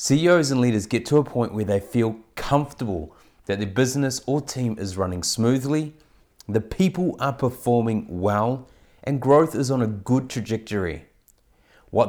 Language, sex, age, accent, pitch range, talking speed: English, male, 30-49, Australian, 105-135 Hz, 160 wpm